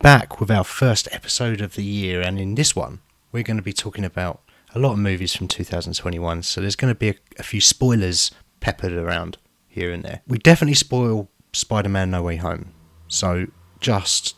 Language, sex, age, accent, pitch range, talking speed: English, male, 30-49, British, 90-130 Hz, 195 wpm